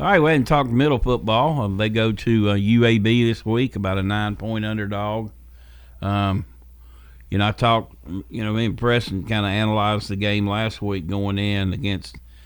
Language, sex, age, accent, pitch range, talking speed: English, male, 50-69, American, 90-115 Hz, 195 wpm